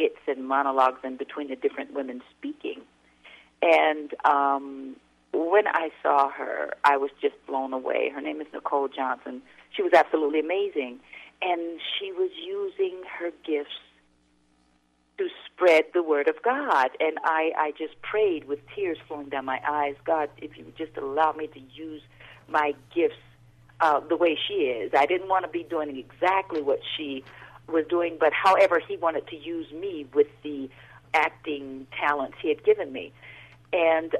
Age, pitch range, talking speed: 50-69, 140-175 Hz, 165 wpm